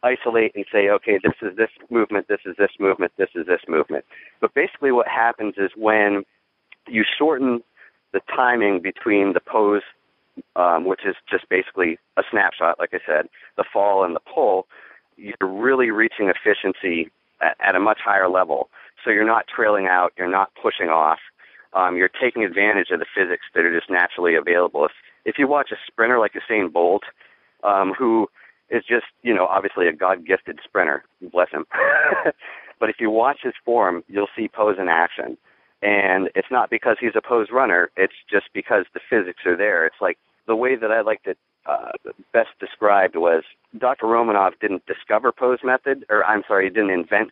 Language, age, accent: English, 40-59, American